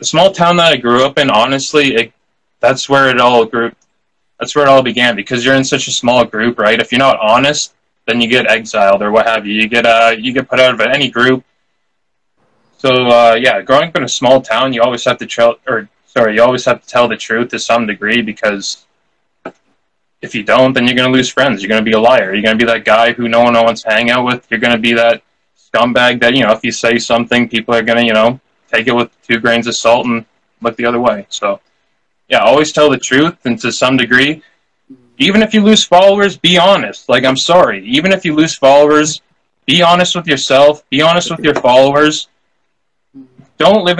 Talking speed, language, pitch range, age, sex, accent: 230 wpm, English, 120-140 Hz, 20-39, male, American